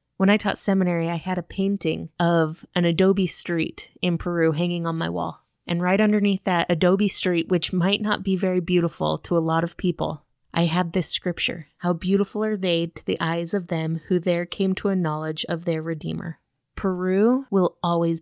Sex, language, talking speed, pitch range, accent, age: female, English, 200 wpm, 165-195 Hz, American, 20-39